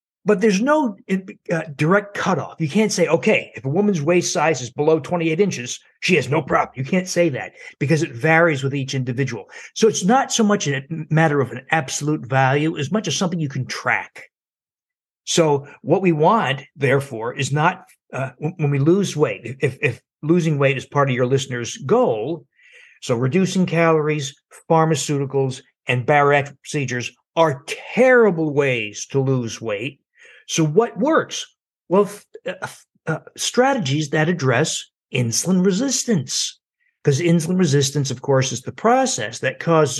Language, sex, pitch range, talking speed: English, male, 135-185 Hz, 160 wpm